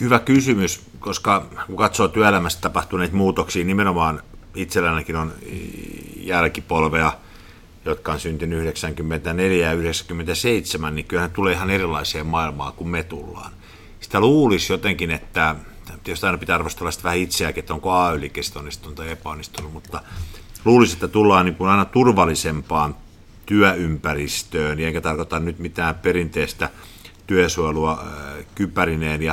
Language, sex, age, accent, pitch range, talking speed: Finnish, male, 50-69, native, 80-95 Hz, 120 wpm